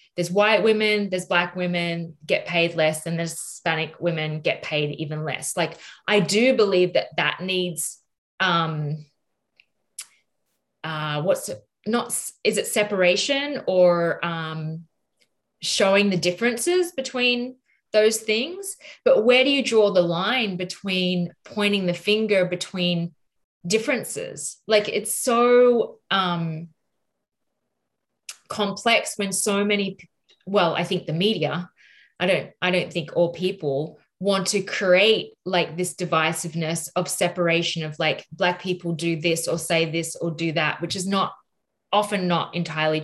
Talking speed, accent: 135 wpm, Australian